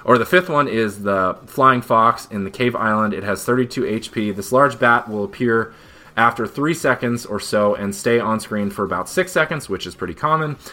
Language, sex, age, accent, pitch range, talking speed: English, male, 30-49, American, 100-125 Hz, 215 wpm